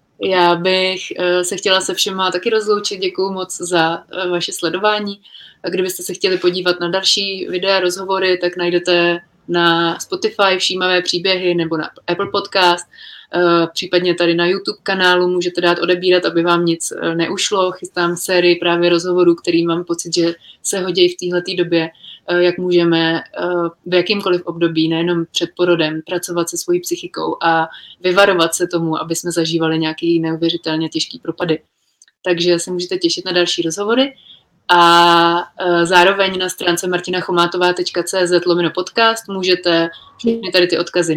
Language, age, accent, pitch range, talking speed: Czech, 30-49, native, 170-190 Hz, 150 wpm